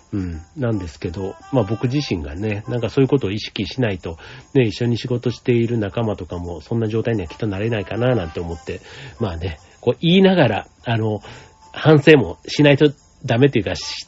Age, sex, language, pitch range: 40-59, male, Japanese, 100-140 Hz